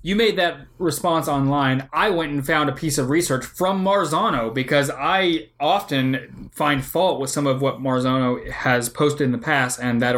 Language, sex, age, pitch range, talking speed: English, male, 20-39, 140-210 Hz, 190 wpm